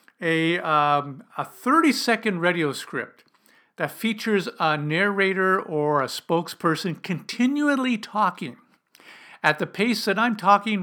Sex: male